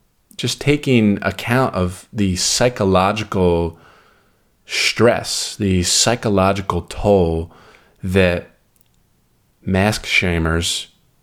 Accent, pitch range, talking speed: American, 90-105 Hz, 70 wpm